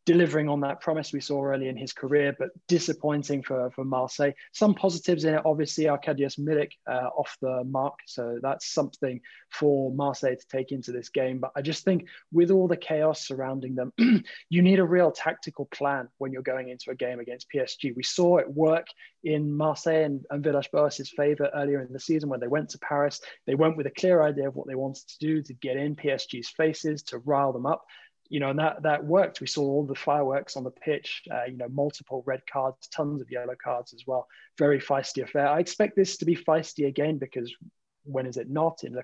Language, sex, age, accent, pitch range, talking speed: English, male, 20-39, British, 130-155 Hz, 220 wpm